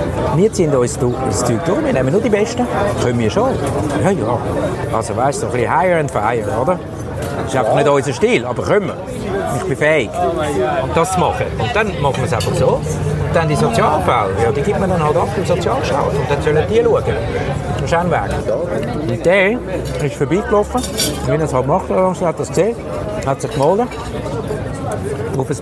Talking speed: 205 wpm